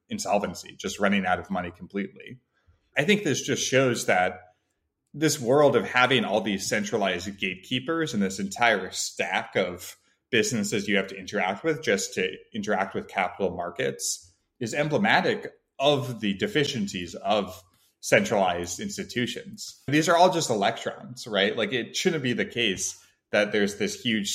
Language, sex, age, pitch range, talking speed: English, male, 20-39, 95-125 Hz, 155 wpm